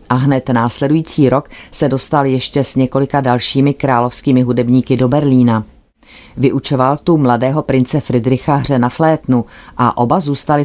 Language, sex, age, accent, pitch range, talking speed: Czech, female, 30-49, native, 120-145 Hz, 140 wpm